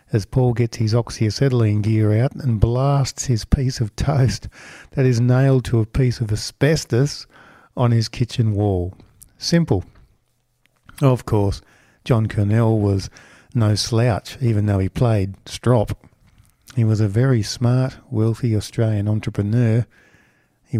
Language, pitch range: English, 105-125 Hz